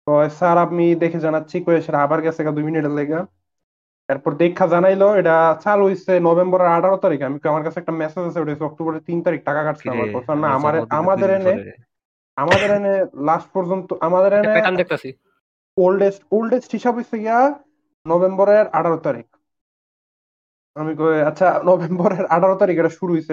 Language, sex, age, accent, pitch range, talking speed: Bengali, male, 30-49, native, 150-190 Hz, 30 wpm